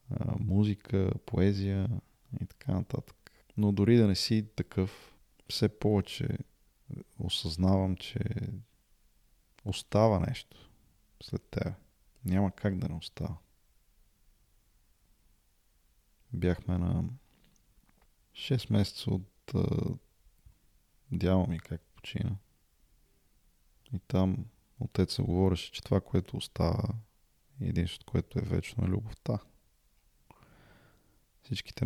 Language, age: Bulgarian, 20-39